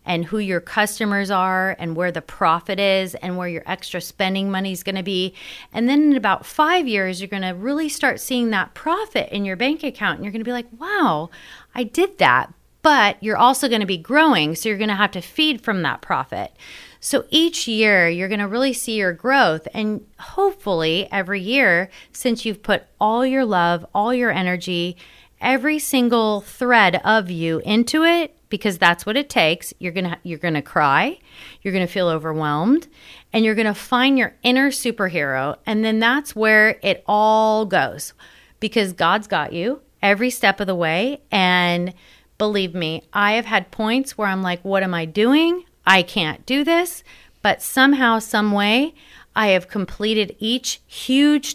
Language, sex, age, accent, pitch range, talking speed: English, female, 30-49, American, 185-250 Hz, 190 wpm